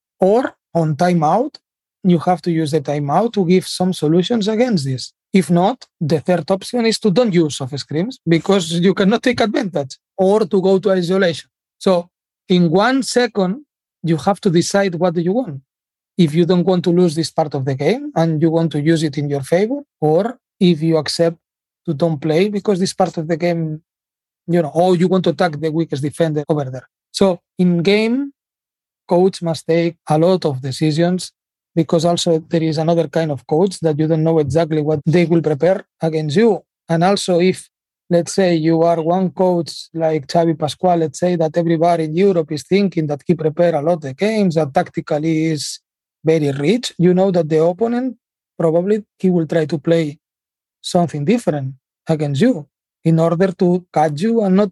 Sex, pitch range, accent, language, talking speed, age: male, 160-190 Hz, Spanish, English, 195 wpm, 40-59